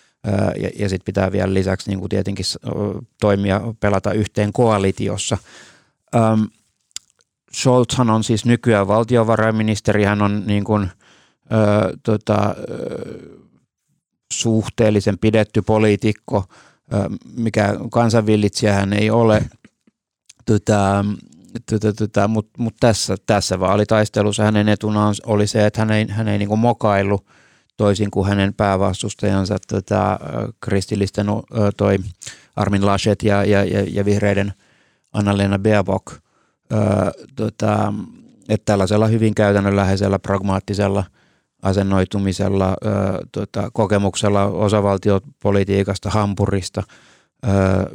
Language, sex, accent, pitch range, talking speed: Finnish, male, native, 100-110 Hz, 95 wpm